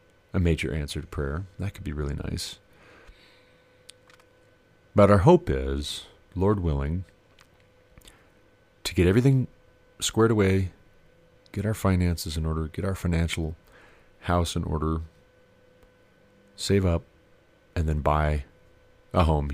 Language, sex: English, male